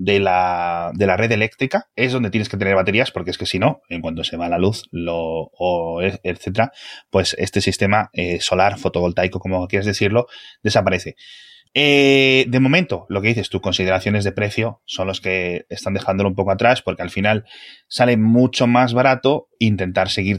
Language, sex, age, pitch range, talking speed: Spanish, male, 20-39, 95-125 Hz, 185 wpm